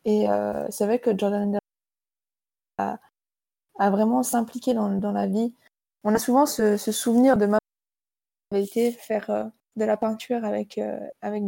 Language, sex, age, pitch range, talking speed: French, female, 20-39, 200-230 Hz, 165 wpm